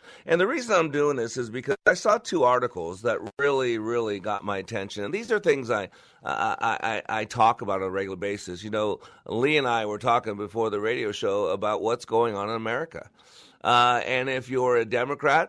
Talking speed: 215 wpm